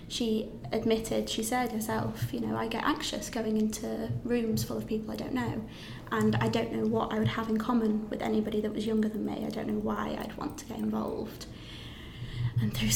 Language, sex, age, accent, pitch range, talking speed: English, female, 20-39, British, 210-240 Hz, 220 wpm